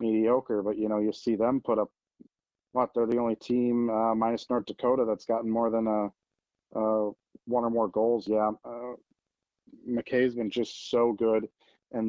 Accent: American